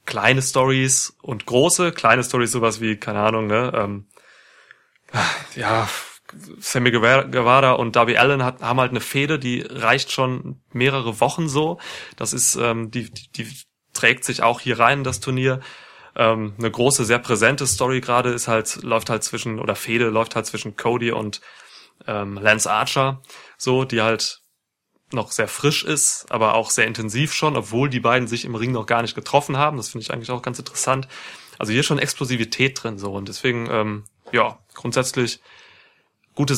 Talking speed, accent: 170 wpm, German